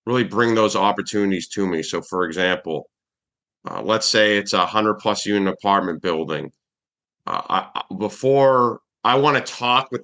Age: 30-49